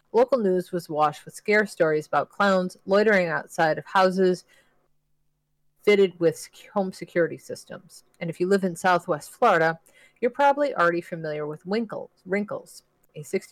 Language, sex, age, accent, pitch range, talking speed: English, female, 30-49, American, 155-185 Hz, 140 wpm